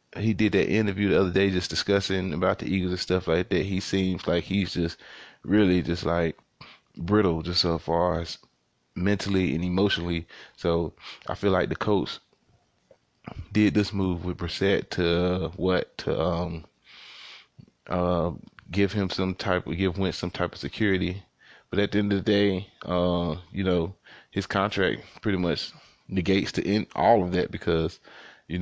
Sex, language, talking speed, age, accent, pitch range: male, English, 170 wpm, 20-39, American, 85-95 Hz